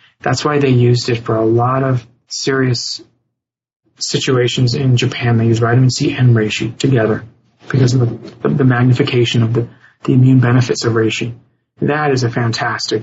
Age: 30-49